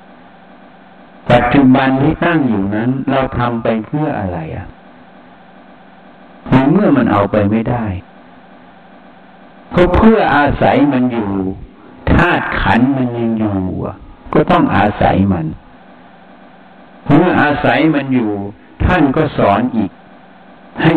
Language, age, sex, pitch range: Thai, 60-79, male, 105-140 Hz